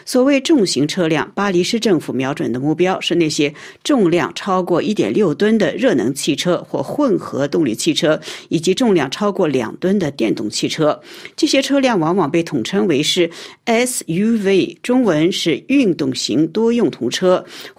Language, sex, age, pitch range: Chinese, female, 50-69, 160-250 Hz